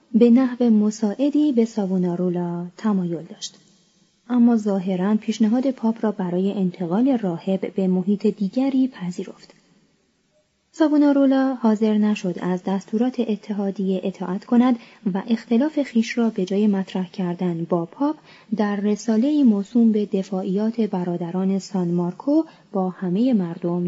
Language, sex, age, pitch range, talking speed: Persian, female, 20-39, 190-245 Hz, 120 wpm